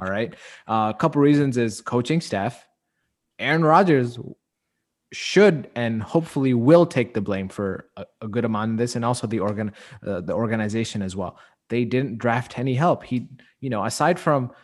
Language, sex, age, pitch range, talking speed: English, male, 20-39, 115-140 Hz, 185 wpm